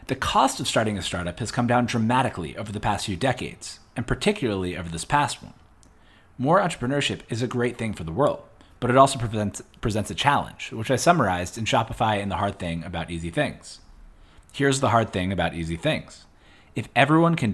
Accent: American